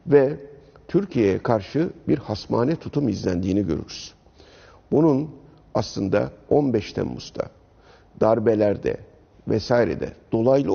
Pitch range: 105-140 Hz